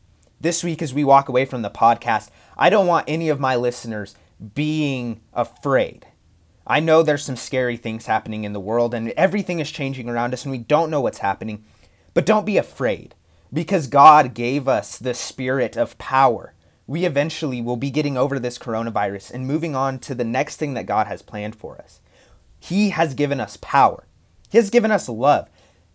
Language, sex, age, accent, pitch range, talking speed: English, male, 30-49, American, 120-150 Hz, 190 wpm